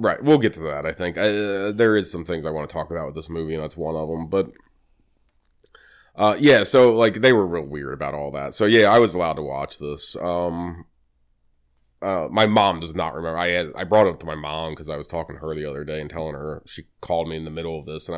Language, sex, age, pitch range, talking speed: English, male, 20-39, 75-105 Hz, 265 wpm